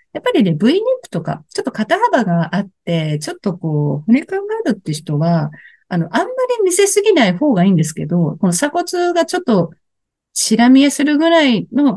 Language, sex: Japanese, female